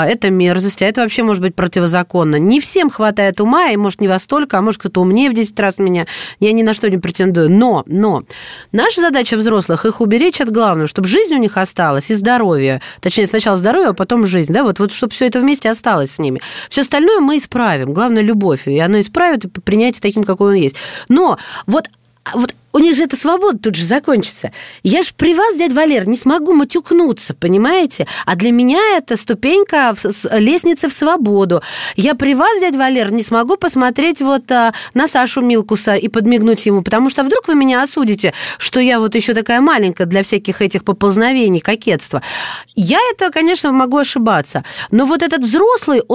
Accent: native